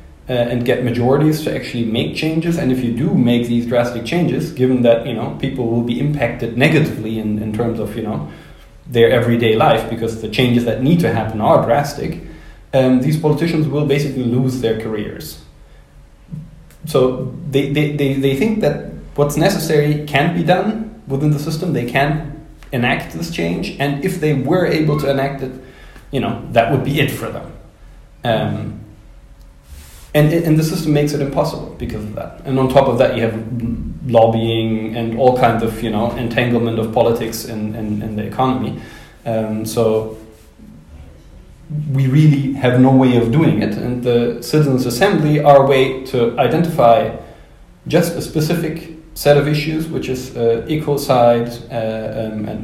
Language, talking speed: English, 170 wpm